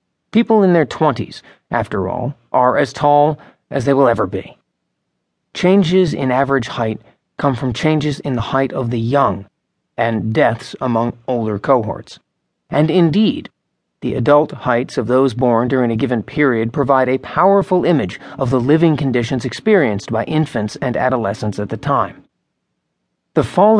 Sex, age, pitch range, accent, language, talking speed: male, 40-59, 120-150 Hz, American, English, 155 wpm